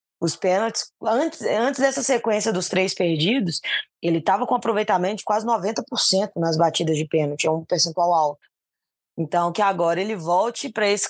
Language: Portuguese